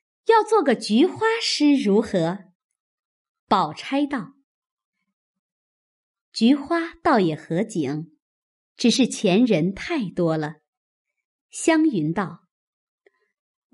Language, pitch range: Chinese, 185-295 Hz